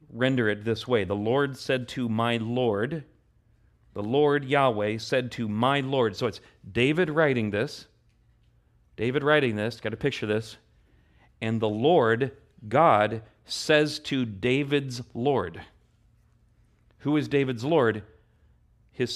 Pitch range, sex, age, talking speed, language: 110-145 Hz, male, 40-59, 135 wpm, English